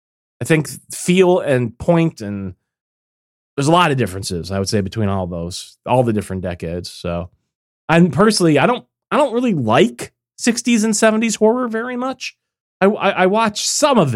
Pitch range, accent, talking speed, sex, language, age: 120-180 Hz, American, 180 wpm, male, English, 30-49